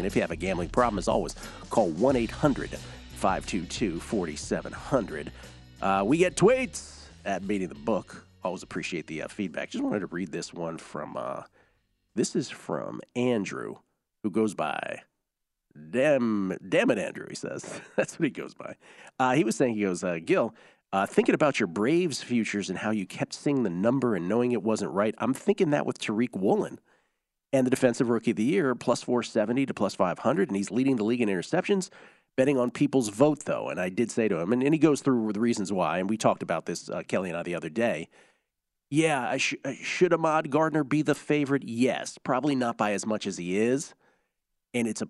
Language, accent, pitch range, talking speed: English, American, 100-135 Hz, 200 wpm